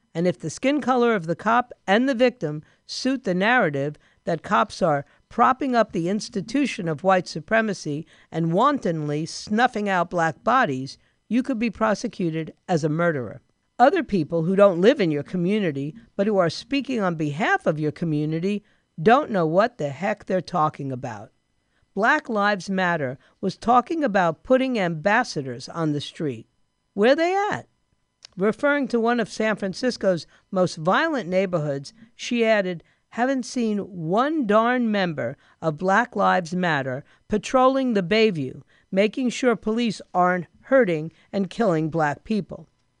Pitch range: 165-230 Hz